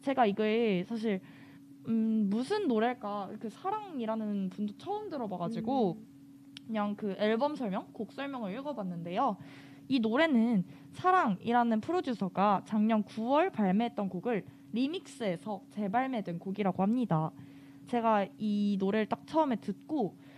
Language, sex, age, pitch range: Korean, female, 20-39, 195-260 Hz